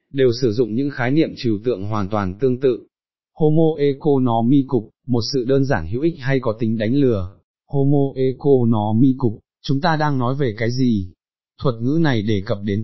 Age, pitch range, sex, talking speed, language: 20-39, 115-145 Hz, male, 185 wpm, Vietnamese